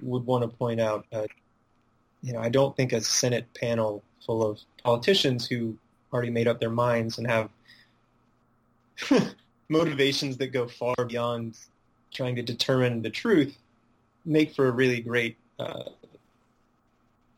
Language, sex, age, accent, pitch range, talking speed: English, male, 20-39, American, 115-130 Hz, 140 wpm